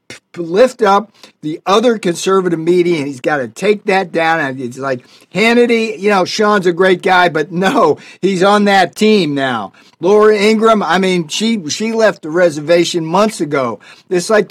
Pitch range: 165-215 Hz